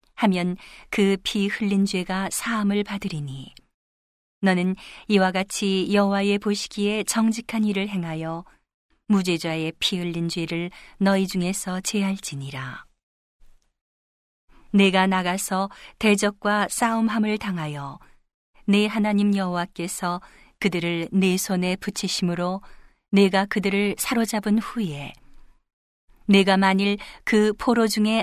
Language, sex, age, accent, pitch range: Korean, female, 40-59, native, 170-205 Hz